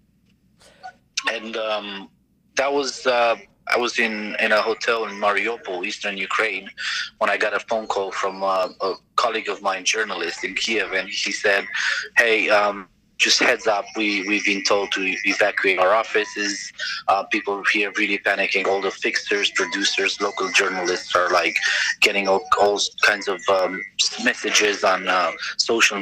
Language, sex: English, male